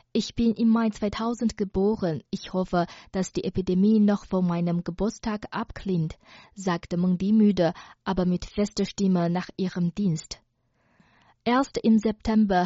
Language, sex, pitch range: German, female, 175-205 Hz